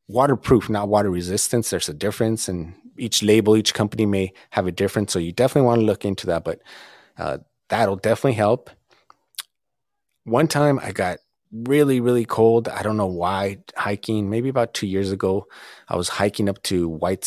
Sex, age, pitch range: male, 30-49, 95-115 Hz